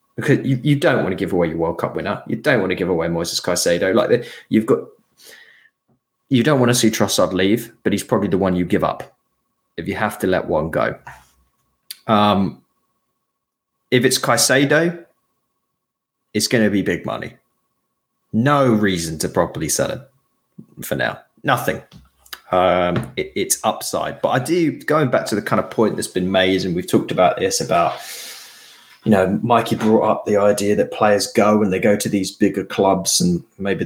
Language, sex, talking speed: English, male, 190 wpm